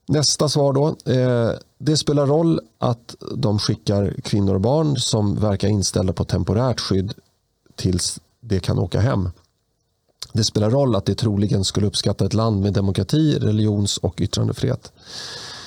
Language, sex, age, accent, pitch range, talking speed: Swedish, male, 30-49, native, 100-125 Hz, 145 wpm